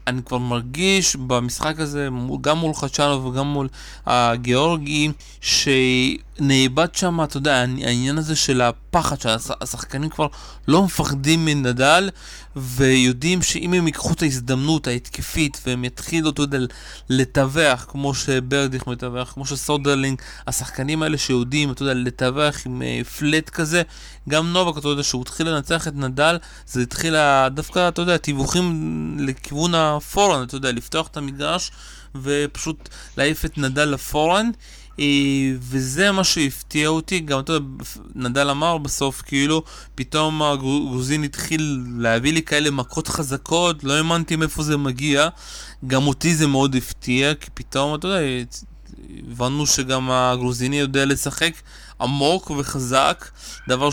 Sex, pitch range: male, 130-155 Hz